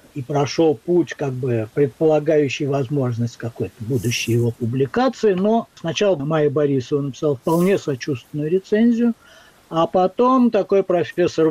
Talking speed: 120 wpm